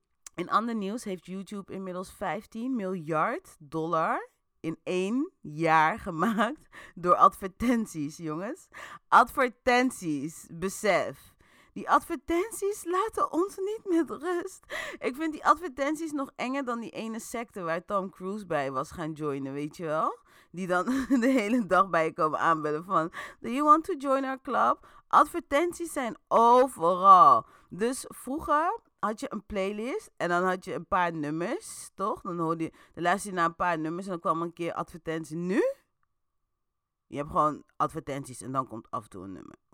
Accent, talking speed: Dutch, 160 wpm